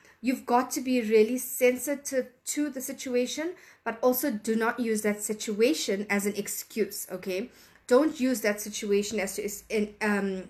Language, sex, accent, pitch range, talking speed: English, female, Indian, 210-265 Hz, 160 wpm